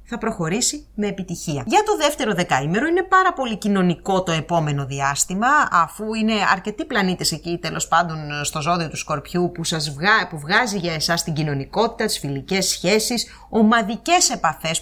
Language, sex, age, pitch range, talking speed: English, female, 30-49, 160-225 Hz, 160 wpm